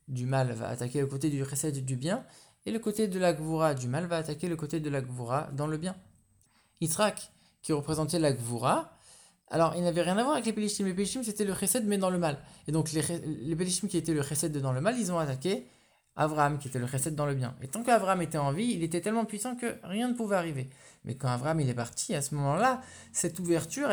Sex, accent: male, French